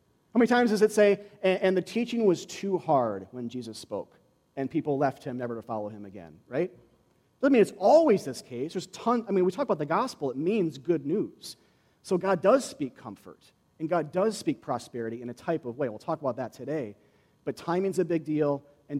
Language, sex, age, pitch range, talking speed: English, male, 40-59, 130-200 Hz, 220 wpm